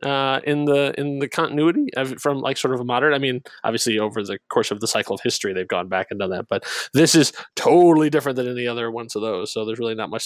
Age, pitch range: 20-39, 125-150 Hz